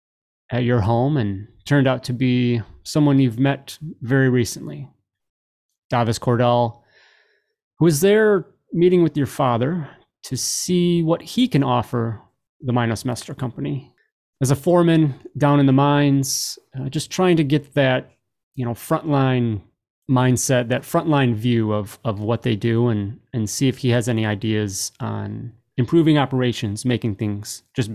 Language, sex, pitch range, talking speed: English, male, 115-145 Hz, 150 wpm